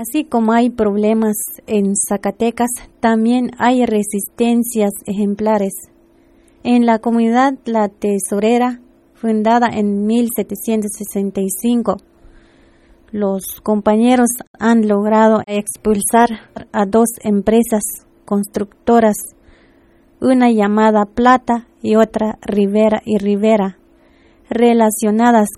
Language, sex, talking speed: Spanish, female, 85 wpm